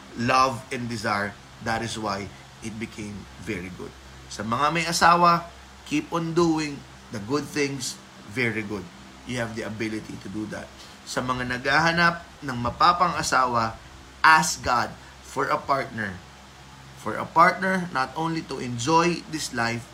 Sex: male